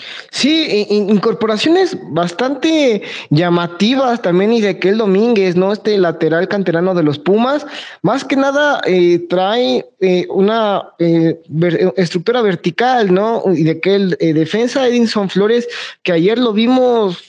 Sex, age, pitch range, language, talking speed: male, 20-39, 175-230 Hz, Spanish, 135 wpm